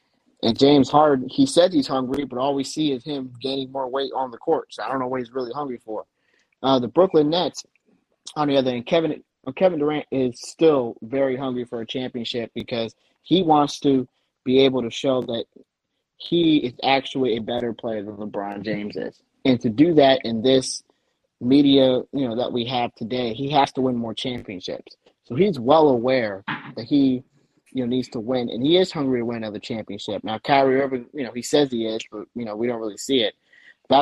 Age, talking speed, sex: 30-49, 215 wpm, male